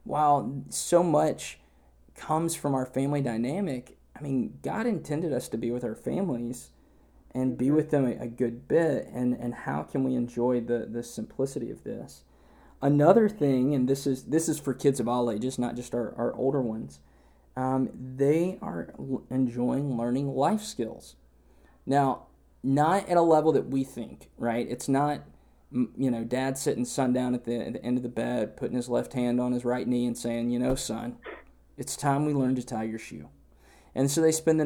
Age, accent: 20-39, American